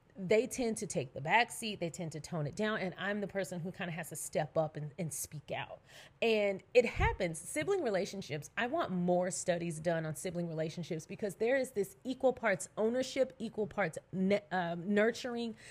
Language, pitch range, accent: English, 170-215 Hz, American